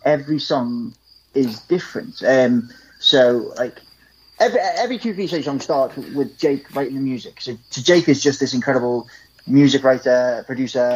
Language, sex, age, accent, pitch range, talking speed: English, male, 20-39, British, 125-150 Hz, 150 wpm